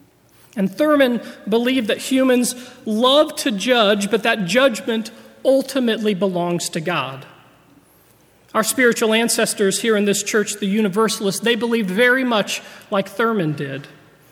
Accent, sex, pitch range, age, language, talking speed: American, male, 190-235 Hz, 40-59, English, 130 wpm